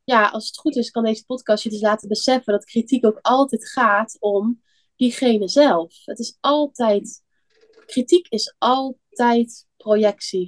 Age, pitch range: 20-39, 205-240 Hz